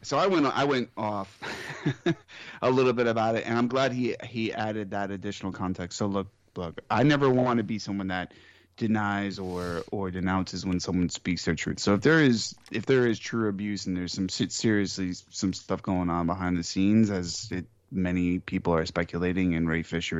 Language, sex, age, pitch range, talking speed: English, male, 20-39, 90-115 Hz, 200 wpm